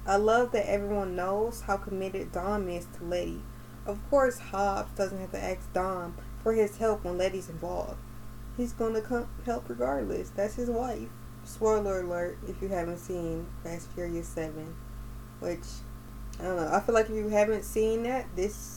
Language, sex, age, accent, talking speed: English, female, 20-39, American, 175 wpm